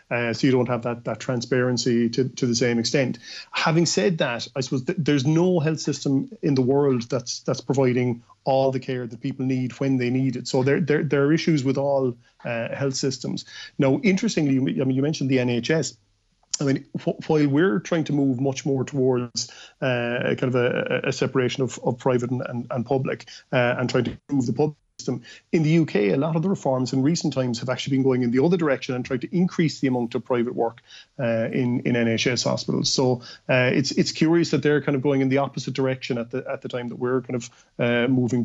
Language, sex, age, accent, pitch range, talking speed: English, male, 30-49, Irish, 120-140 Hz, 230 wpm